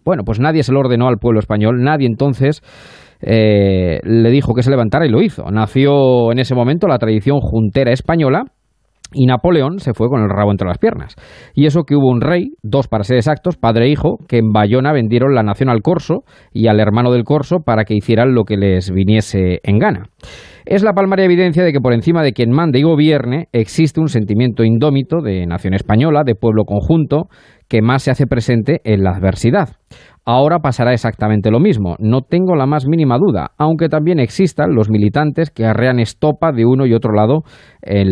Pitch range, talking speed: 110-145 Hz, 205 wpm